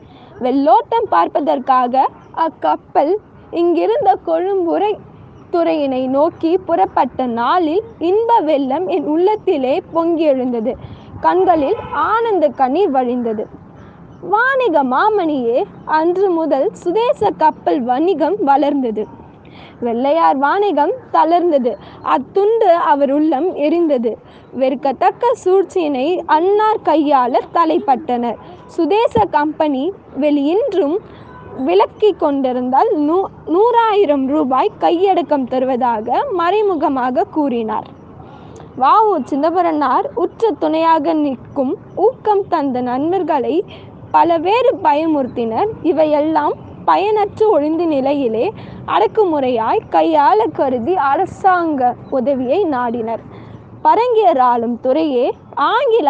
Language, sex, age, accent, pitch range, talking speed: Tamil, female, 20-39, native, 275-390 Hz, 70 wpm